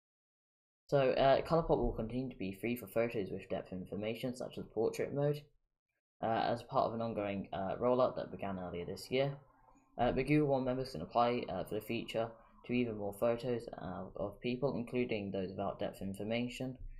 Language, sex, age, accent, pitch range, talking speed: English, female, 10-29, British, 95-125 Hz, 185 wpm